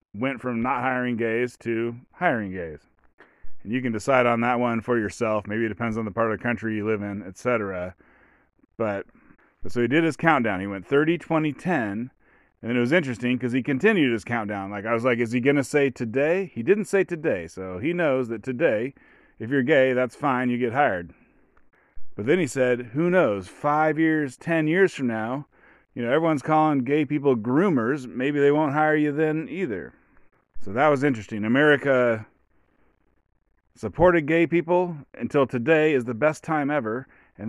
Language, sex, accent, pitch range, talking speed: English, male, American, 115-145 Hz, 190 wpm